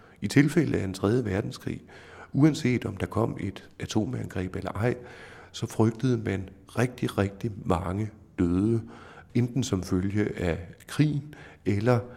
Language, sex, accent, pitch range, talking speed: Danish, male, native, 95-120 Hz, 135 wpm